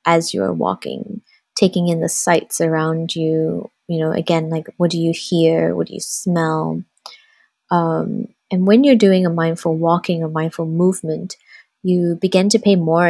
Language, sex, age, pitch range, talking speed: English, female, 20-39, 165-200 Hz, 170 wpm